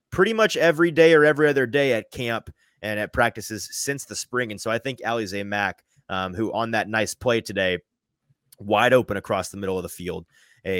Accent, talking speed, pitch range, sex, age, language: American, 215 wpm, 100-135 Hz, male, 30-49, English